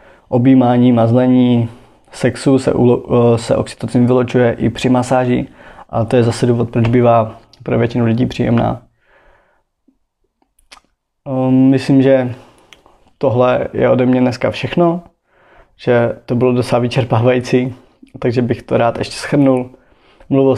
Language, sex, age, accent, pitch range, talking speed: Czech, male, 20-39, native, 115-130 Hz, 115 wpm